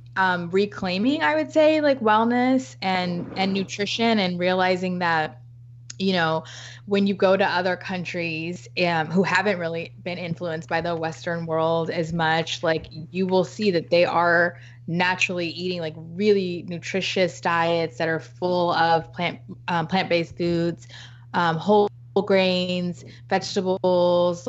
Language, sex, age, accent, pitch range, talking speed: English, female, 20-39, American, 165-190 Hz, 140 wpm